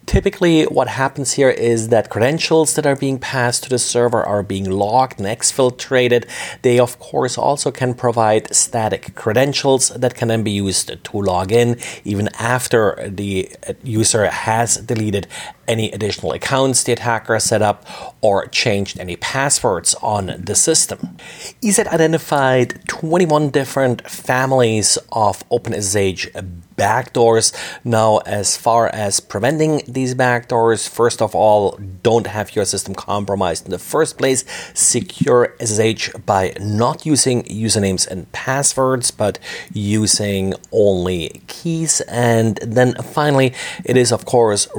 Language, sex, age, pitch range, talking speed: English, male, 40-59, 105-130 Hz, 135 wpm